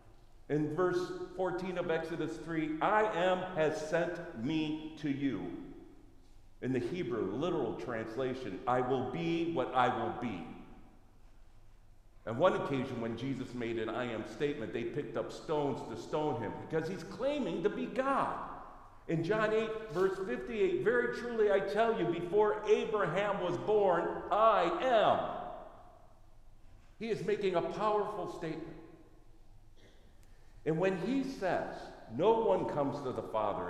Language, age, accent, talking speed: English, 50-69, American, 140 wpm